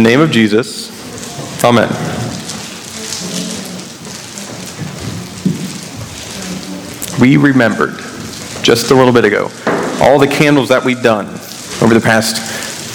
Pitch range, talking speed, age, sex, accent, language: 120-140 Hz, 100 wpm, 40-59, male, American, English